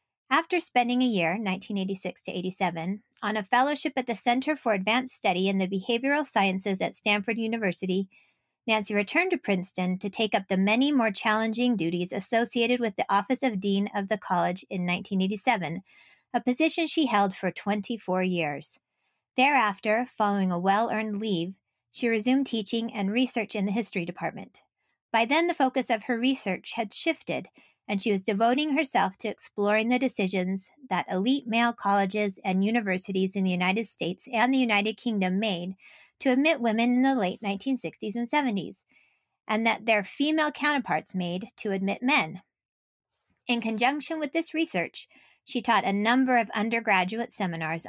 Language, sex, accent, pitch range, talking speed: English, female, American, 190-245 Hz, 165 wpm